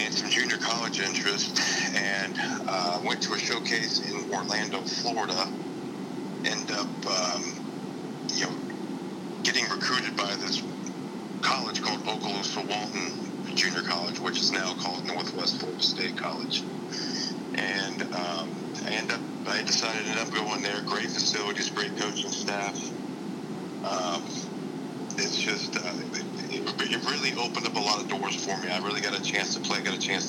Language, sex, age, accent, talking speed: English, male, 40-59, American, 160 wpm